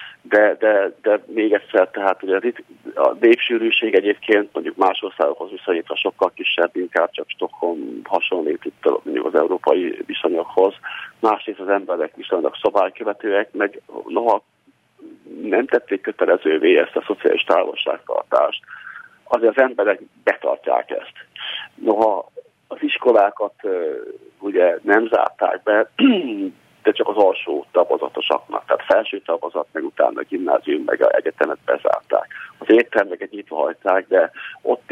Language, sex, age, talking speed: Hungarian, male, 50-69, 120 wpm